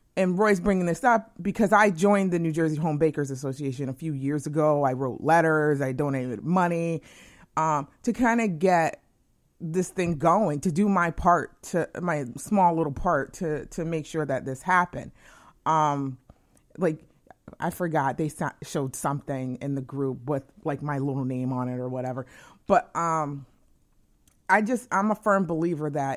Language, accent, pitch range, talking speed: English, American, 135-175 Hz, 175 wpm